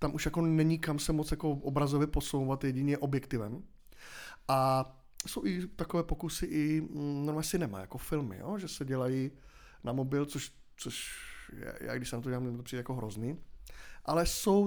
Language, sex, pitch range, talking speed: Czech, male, 135-180 Hz, 170 wpm